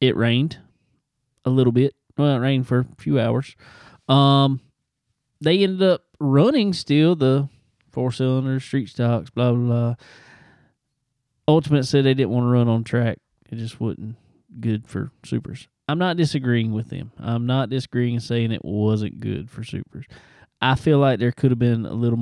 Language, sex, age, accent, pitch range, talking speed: English, male, 20-39, American, 120-150 Hz, 175 wpm